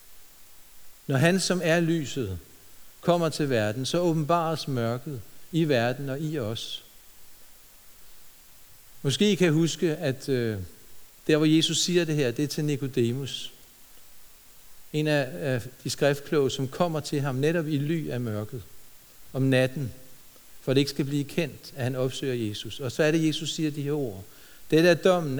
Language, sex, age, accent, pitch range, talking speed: Danish, male, 60-79, native, 125-170 Hz, 165 wpm